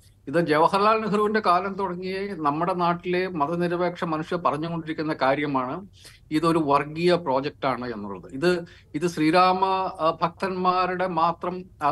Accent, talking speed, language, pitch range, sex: native, 105 wpm, Malayalam, 130-175 Hz, male